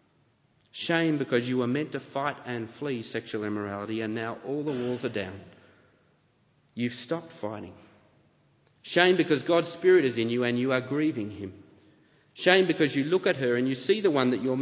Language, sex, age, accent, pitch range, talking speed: English, male, 40-59, Australian, 110-145 Hz, 190 wpm